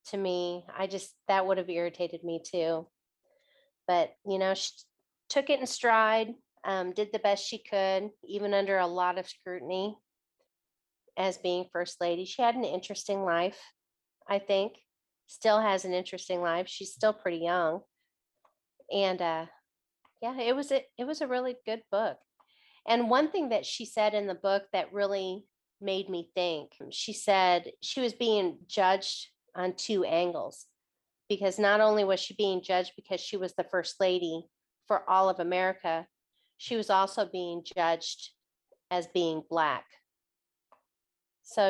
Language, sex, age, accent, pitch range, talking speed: English, female, 40-59, American, 180-210 Hz, 160 wpm